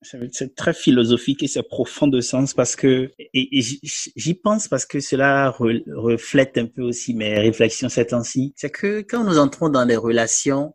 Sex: male